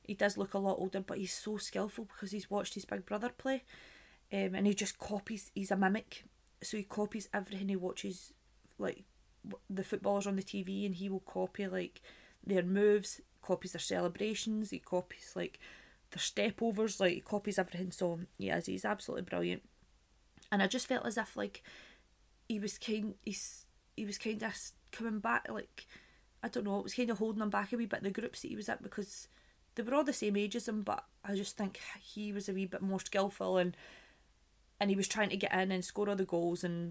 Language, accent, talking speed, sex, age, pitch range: English, British, 215 wpm, female, 20-39, 185-210 Hz